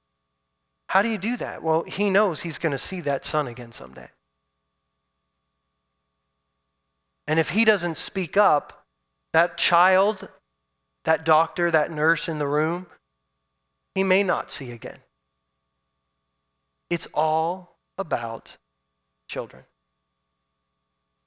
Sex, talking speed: male, 110 wpm